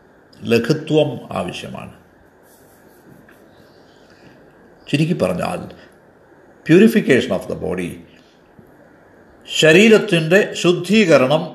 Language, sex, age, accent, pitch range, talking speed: Malayalam, male, 60-79, native, 125-185 Hz, 50 wpm